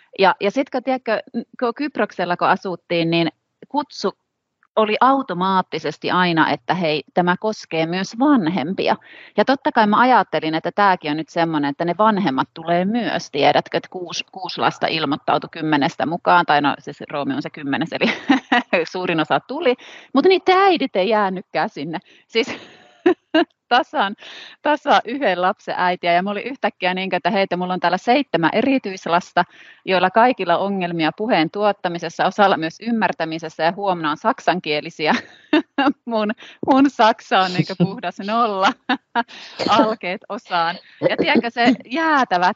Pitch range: 175-250 Hz